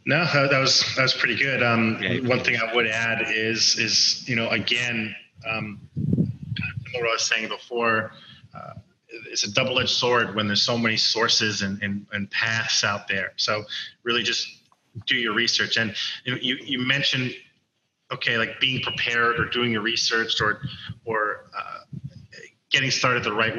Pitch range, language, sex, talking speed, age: 115-135 Hz, English, male, 165 wpm, 30-49